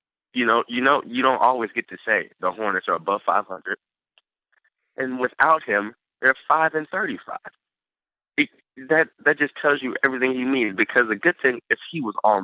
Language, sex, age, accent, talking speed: English, male, 30-49, American, 190 wpm